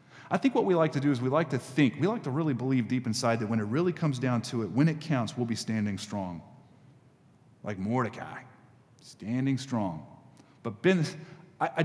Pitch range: 115-145 Hz